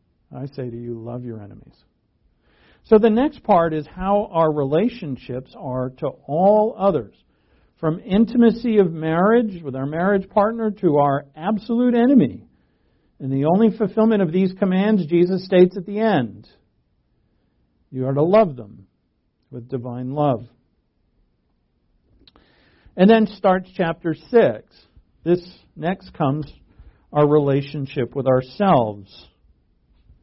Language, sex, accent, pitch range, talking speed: English, male, American, 135-210 Hz, 125 wpm